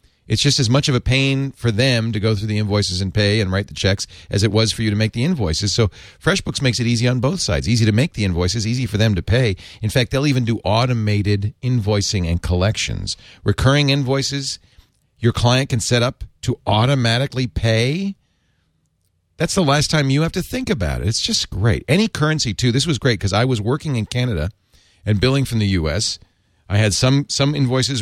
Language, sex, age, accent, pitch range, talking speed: English, male, 40-59, American, 95-125 Hz, 215 wpm